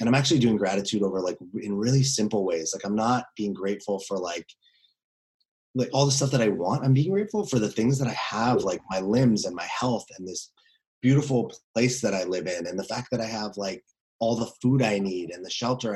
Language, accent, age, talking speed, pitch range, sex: English, American, 30-49, 235 wpm, 100-130 Hz, male